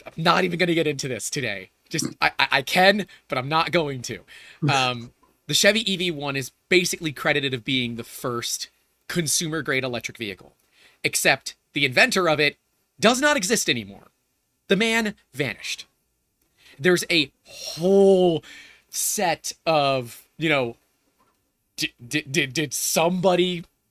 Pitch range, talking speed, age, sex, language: 140-180 Hz, 145 wpm, 30-49, male, English